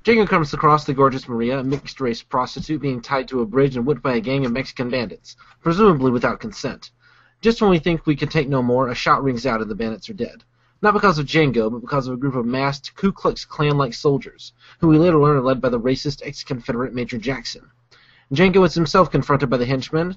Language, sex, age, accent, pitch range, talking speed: English, male, 30-49, American, 125-155 Hz, 230 wpm